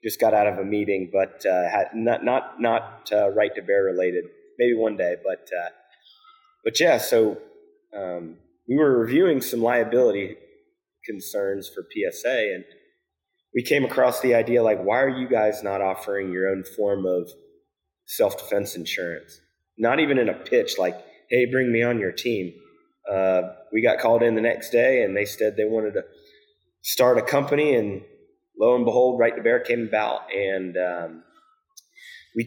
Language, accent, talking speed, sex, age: English, American, 175 wpm, male, 30-49